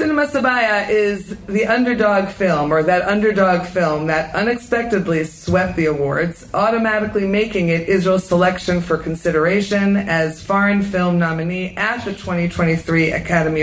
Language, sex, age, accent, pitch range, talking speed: English, female, 30-49, American, 175-220 Hz, 130 wpm